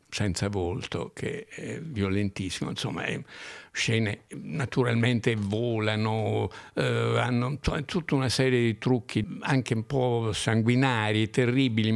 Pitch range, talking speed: 100-125 Hz, 110 wpm